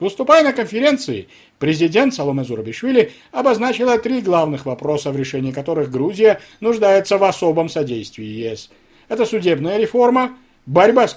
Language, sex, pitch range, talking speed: Russian, male, 140-190 Hz, 130 wpm